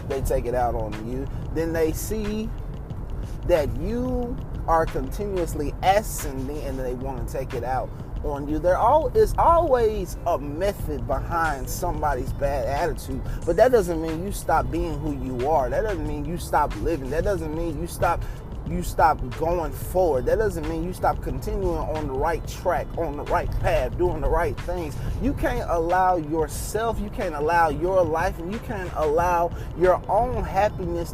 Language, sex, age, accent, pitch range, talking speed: English, male, 20-39, American, 125-180 Hz, 175 wpm